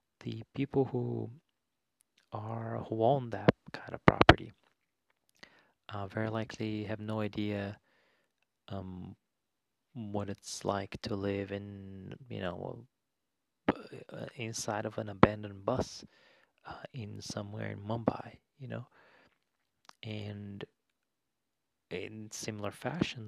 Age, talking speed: 30-49, 105 wpm